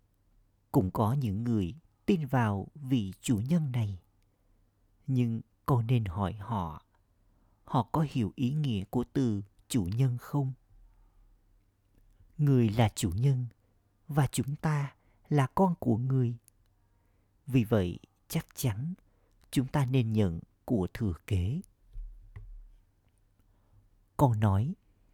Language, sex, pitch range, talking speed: Vietnamese, male, 100-125 Hz, 115 wpm